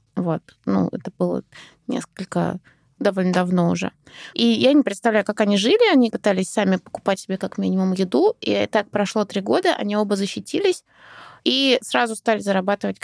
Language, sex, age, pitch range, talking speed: Russian, female, 20-39, 205-250 Hz, 160 wpm